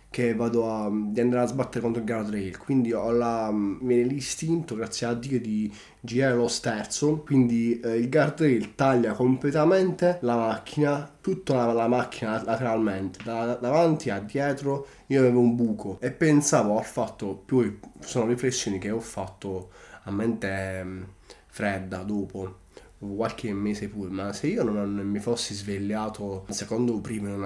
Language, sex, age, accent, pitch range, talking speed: Italian, male, 20-39, native, 105-125 Hz, 160 wpm